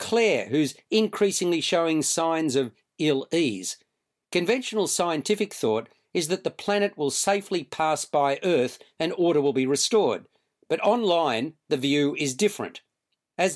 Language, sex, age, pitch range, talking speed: English, male, 50-69, 145-195 Hz, 140 wpm